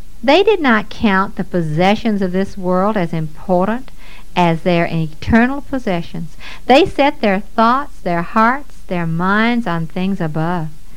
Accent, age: American, 60-79